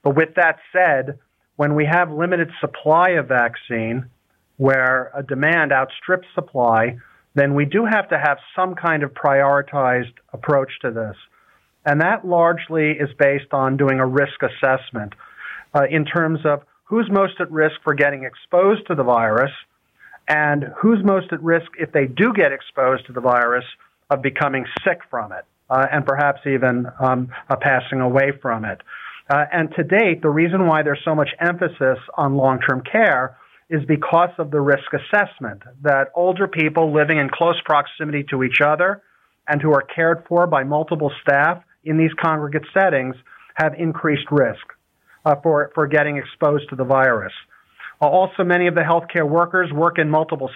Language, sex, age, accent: English, male, 40-59, American